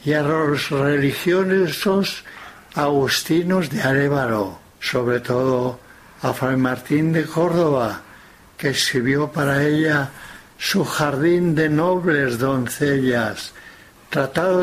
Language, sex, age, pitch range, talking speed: Spanish, male, 60-79, 135-160 Hz, 100 wpm